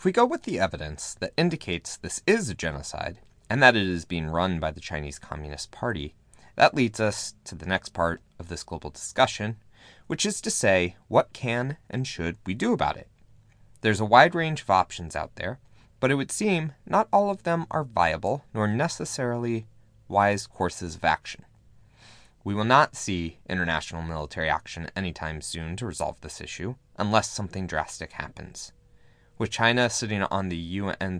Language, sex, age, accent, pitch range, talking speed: English, male, 30-49, American, 90-125 Hz, 180 wpm